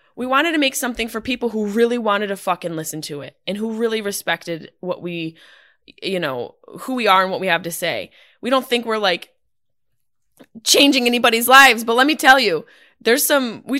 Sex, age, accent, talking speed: female, 20-39, American, 210 wpm